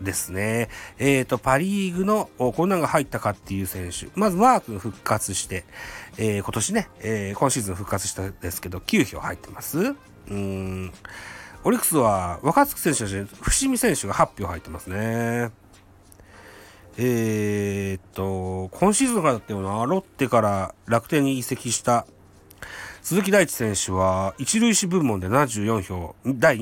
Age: 40-59